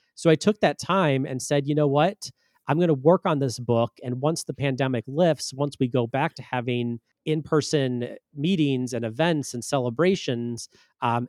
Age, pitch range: 30-49, 125-150 Hz